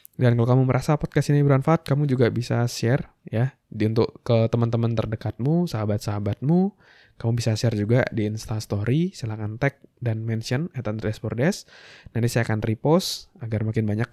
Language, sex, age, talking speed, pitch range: Indonesian, male, 20-39, 165 wpm, 110-140 Hz